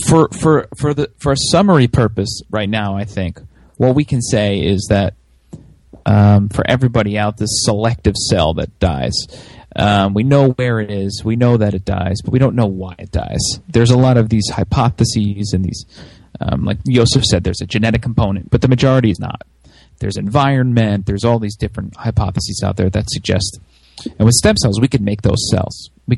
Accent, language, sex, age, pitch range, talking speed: American, English, male, 30-49, 100-120 Hz, 200 wpm